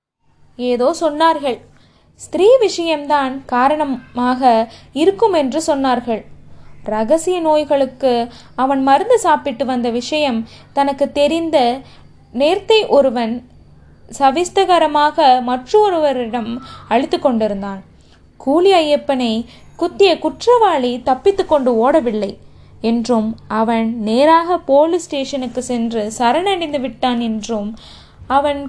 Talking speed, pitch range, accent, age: 50 wpm, 245-320 Hz, native, 20-39